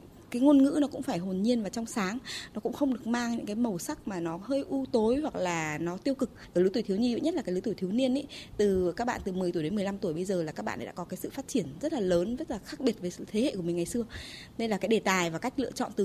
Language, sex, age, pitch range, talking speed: Vietnamese, female, 20-39, 190-255 Hz, 330 wpm